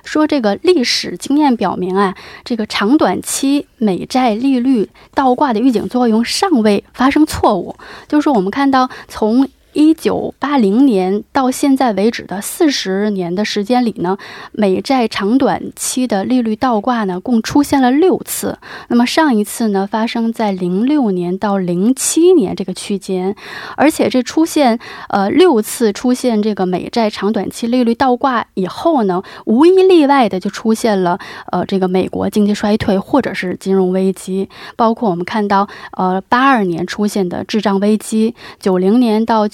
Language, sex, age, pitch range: Korean, female, 20-39, 195-255 Hz